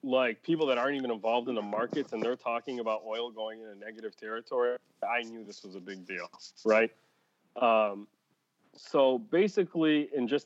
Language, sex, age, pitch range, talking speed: English, male, 30-49, 110-140 Hz, 185 wpm